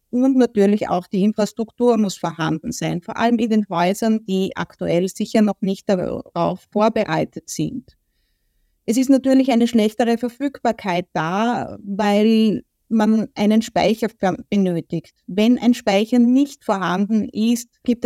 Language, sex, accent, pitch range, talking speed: German, female, Austrian, 190-230 Hz, 135 wpm